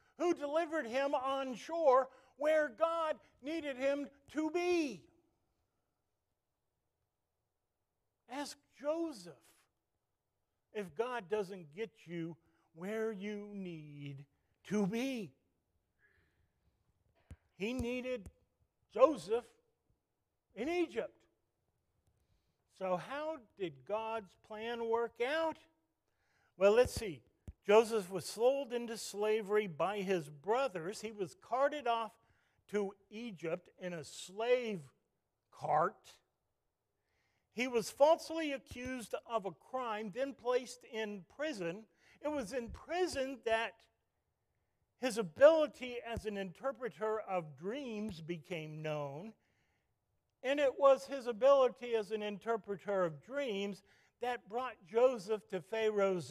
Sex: male